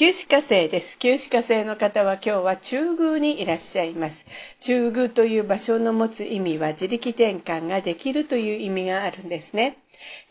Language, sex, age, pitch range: Japanese, female, 50-69, 190-255 Hz